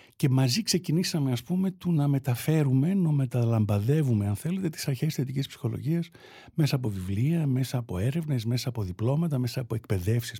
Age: 60-79